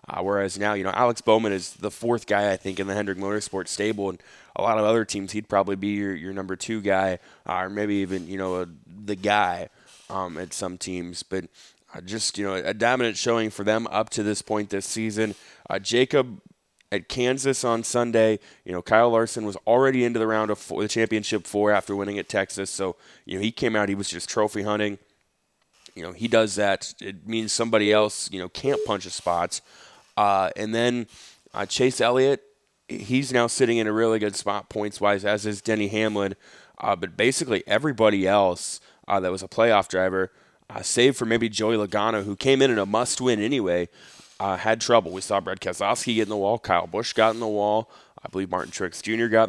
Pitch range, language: 95-115 Hz, Thai